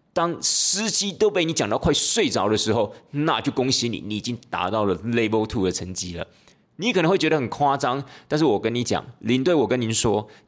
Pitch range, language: 105-150 Hz, Chinese